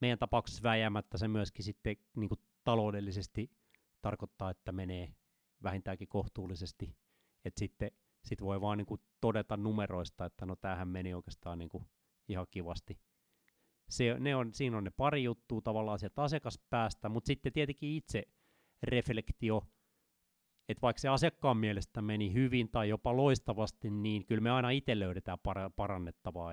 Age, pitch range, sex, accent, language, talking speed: 30-49, 100-120 Hz, male, native, Finnish, 140 wpm